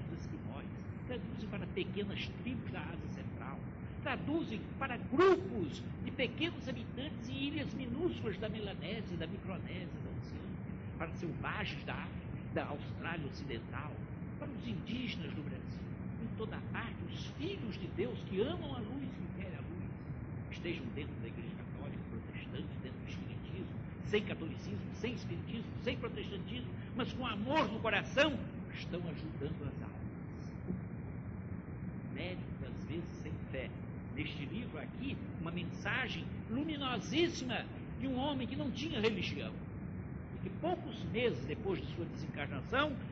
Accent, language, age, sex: Brazilian, Portuguese, 60-79, male